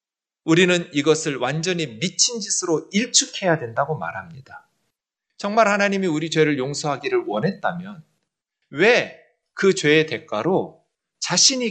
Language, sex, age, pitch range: Korean, male, 40-59, 145-205 Hz